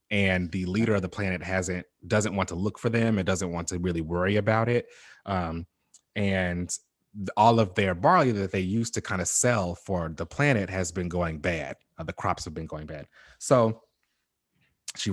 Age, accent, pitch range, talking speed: 30-49, American, 90-110 Hz, 200 wpm